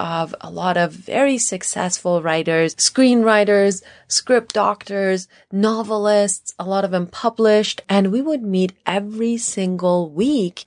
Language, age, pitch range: English, 30-49, 165-210 Hz